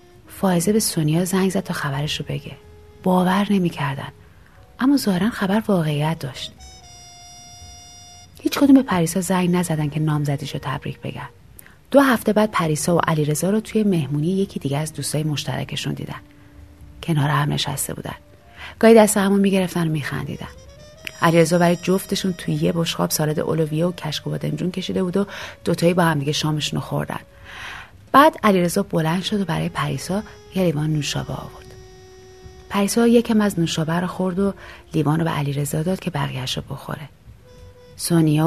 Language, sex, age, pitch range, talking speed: Persian, female, 30-49, 140-185 Hz, 150 wpm